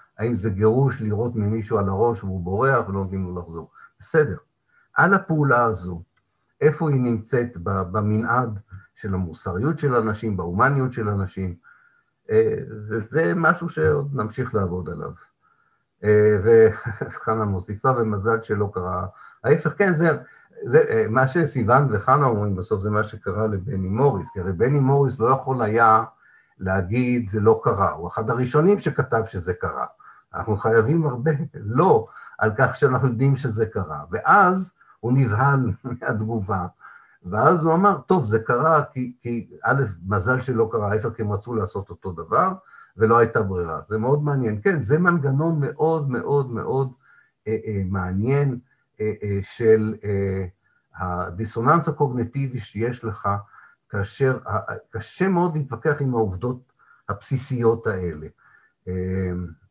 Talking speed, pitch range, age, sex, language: 135 wpm, 105-140 Hz, 50-69, male, Hebrew